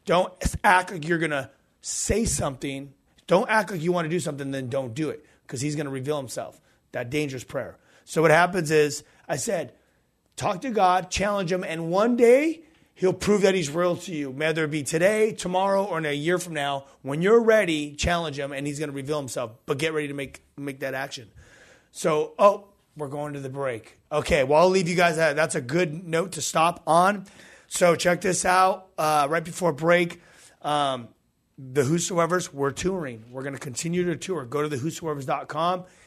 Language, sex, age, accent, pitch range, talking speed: English, male, 30-49, American, 145-175 Hz, 205 wpm